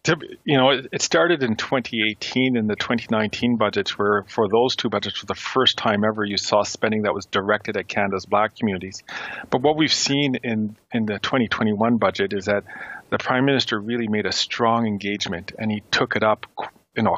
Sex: male